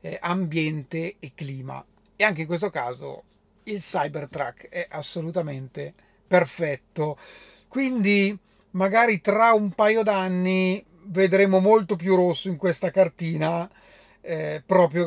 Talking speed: 110 wpm